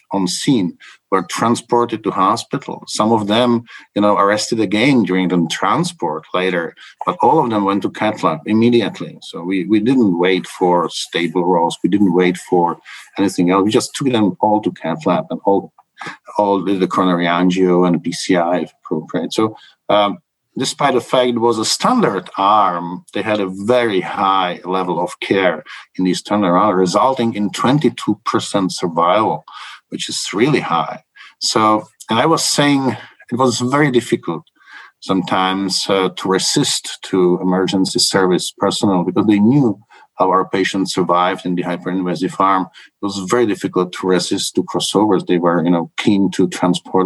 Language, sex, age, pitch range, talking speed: English, male, 50-69, 90-110 Hz, 165 wpm